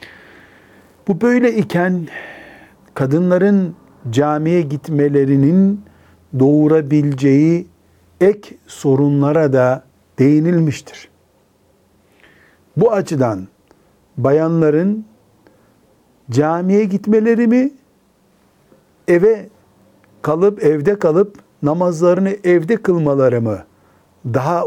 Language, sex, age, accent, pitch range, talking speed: Turkish, male, 60-79, native, 120-155 Hz, 65 wpm